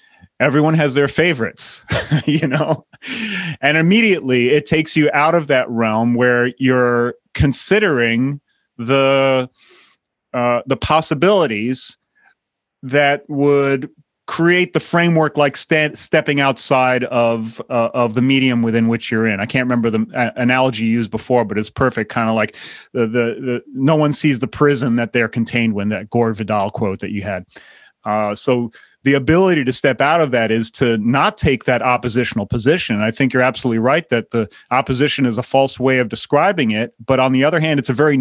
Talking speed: 175 wpm